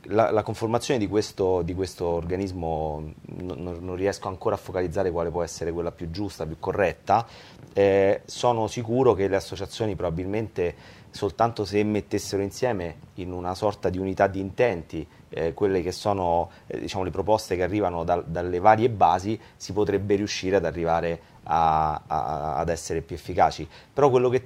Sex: male